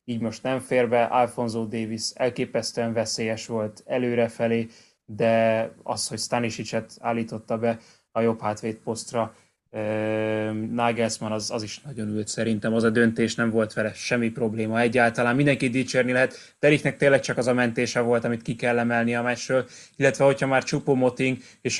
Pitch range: 110-125 Hz